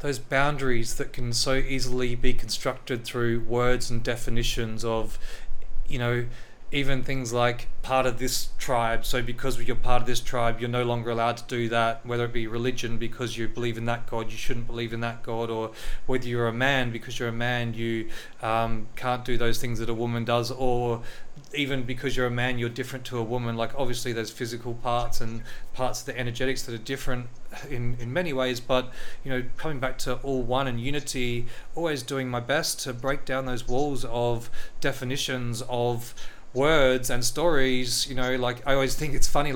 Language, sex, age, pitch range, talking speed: English, male, 30-49, 120-130 Hz, 200 wpm